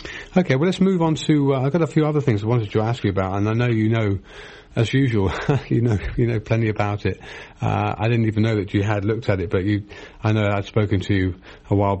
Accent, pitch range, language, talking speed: British, 100-115 Hz, English, 270 wpm